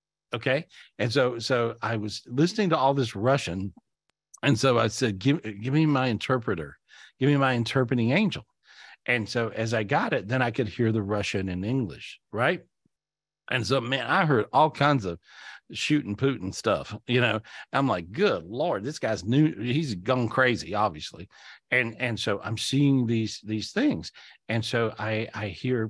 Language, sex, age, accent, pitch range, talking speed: English, male, 50-69, American, 110-130 Hz, 180 wpm